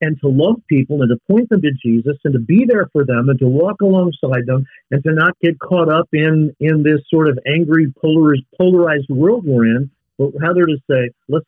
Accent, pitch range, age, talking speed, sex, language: American, 120-155 Hz, 50-69, 225 wpm, male, English